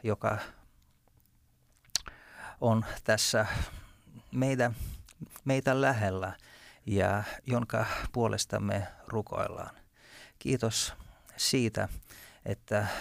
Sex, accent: male, native